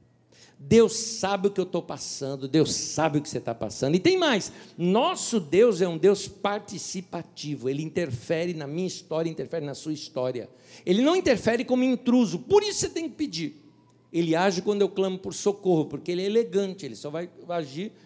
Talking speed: 195 wpm